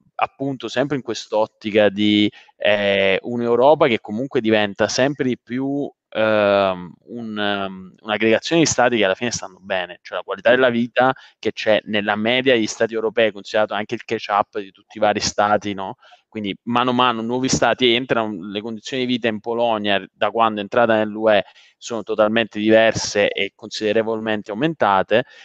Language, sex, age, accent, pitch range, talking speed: Italian, male, 20-39, native, 105-125 Hz, 165 wpm